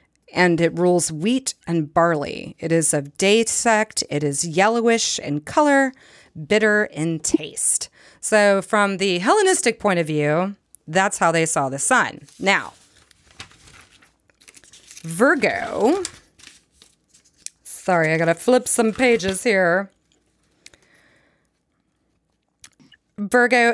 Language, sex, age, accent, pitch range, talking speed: English, female, 30-49, American, 165-245 Hz, 110 wpm